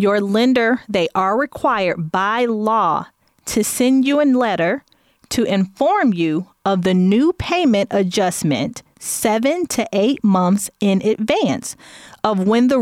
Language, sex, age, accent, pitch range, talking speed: English, female, 30-49, American, 190-245 Hz, 135 wpm